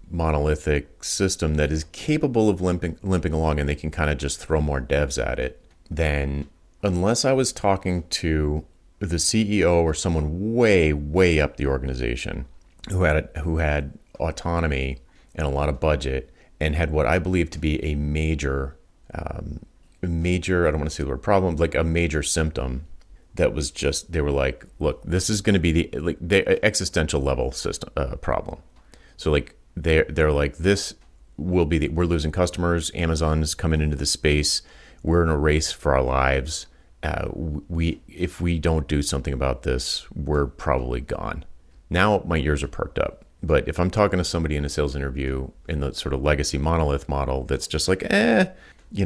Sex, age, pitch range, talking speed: male, 30-49, 70-90 Hz, 185 wpm